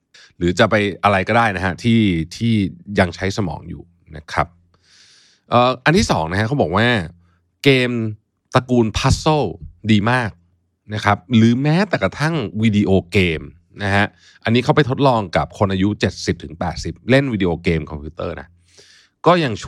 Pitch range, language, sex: 85-120 Hz, Thai, male